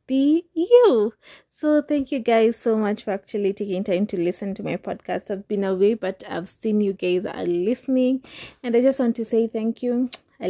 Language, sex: English, female